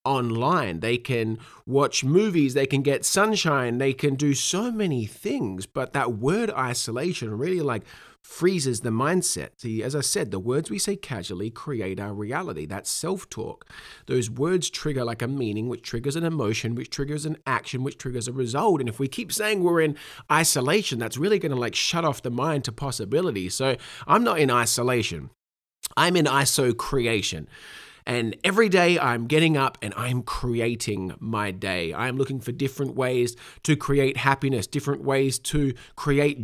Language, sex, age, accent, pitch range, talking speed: English, male, 30-49, Australian, 120-155 Hz, 175 wpm